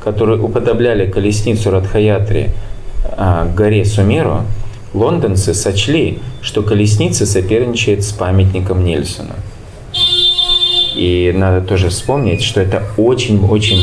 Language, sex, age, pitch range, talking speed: Russian, male, 20-39, 90-105 Hz, 95 wpm